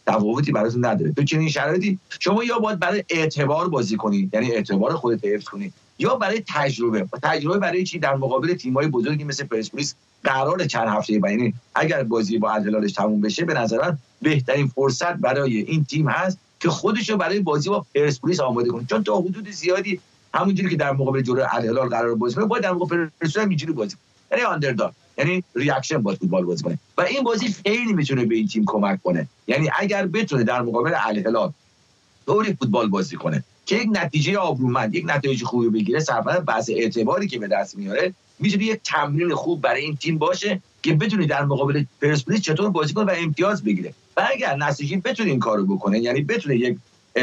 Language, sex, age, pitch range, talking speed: English, male, 50-69, 120-185 Hz, 190 wpm